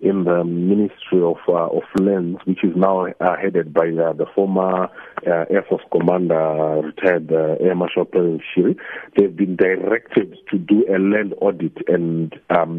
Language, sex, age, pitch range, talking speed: English, male, 50-69, 85-100 Hz, 170 wpm